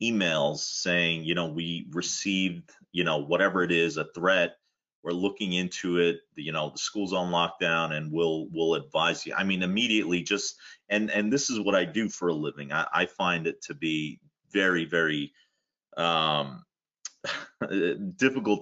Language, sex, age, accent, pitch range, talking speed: English, male, 30-49, American, 80-95 Hz, 170 wpm